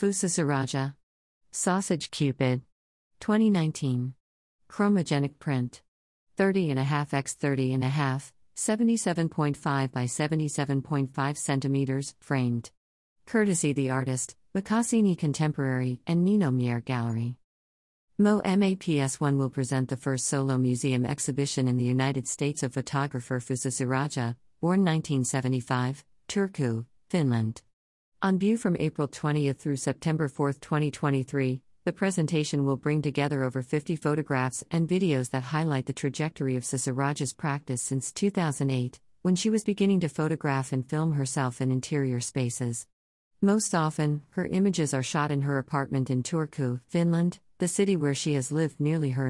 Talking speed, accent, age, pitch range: 135 wpm, American, 50-69, 130-160 Hz